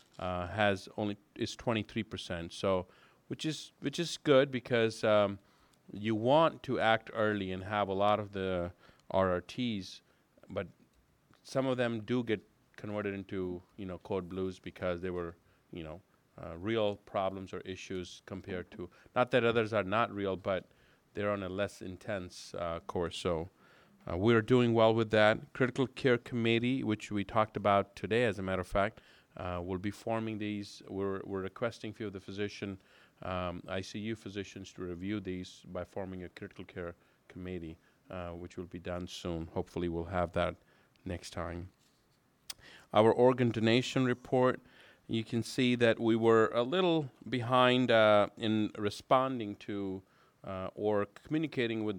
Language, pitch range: English, 95-115 Hz